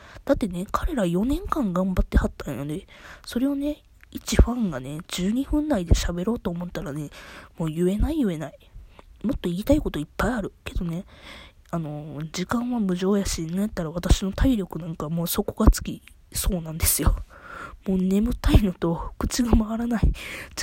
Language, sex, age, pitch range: Japanese, female, 20-39, 155-225 Hz